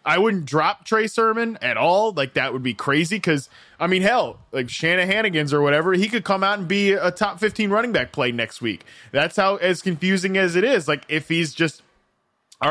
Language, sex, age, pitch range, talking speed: English, male, 20-39, 130-175 Hz, 220 wpm